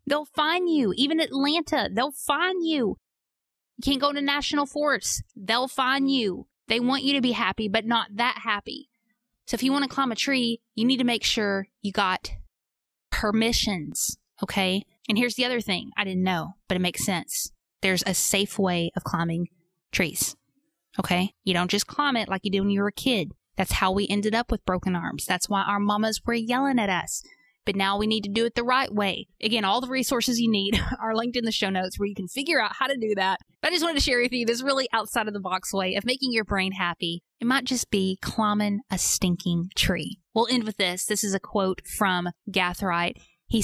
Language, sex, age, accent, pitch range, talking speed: English, female, 20-39, American, 190-250 Hz, 225 wpm